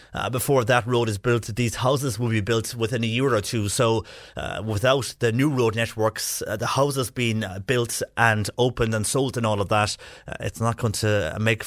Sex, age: male, 30-49